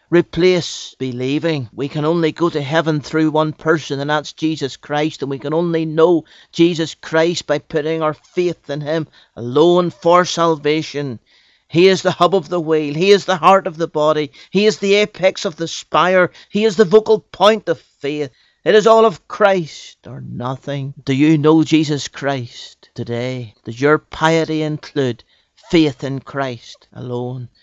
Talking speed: 175 wpm